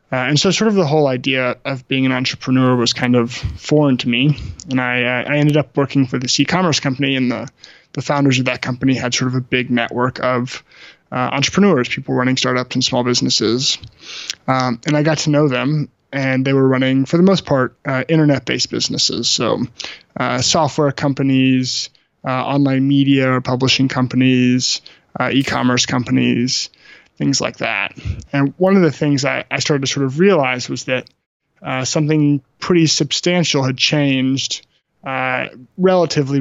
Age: 20-39